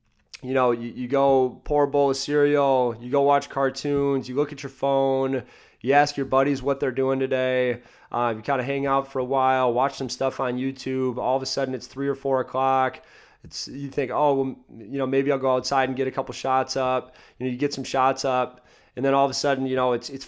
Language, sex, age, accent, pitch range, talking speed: English, male, 20-39, American, 125-140 Hz, 245 wpm